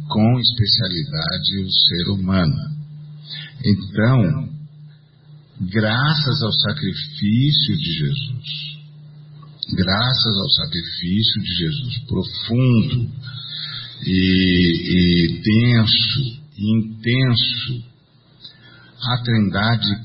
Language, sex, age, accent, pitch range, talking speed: Portuguese, male, 50-69, Brazilian, 95-145 Hz, 70 wpm